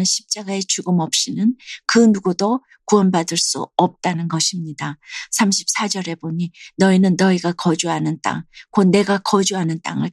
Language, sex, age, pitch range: Korean, female, 50-69, 170-215 Hz